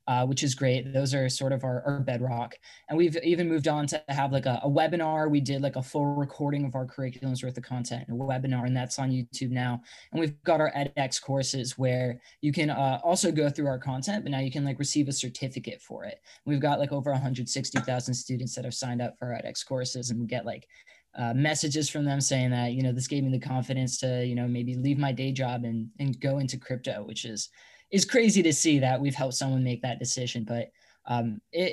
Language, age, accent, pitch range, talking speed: English, 20-39, American, 125-150 Hz, 240 wpm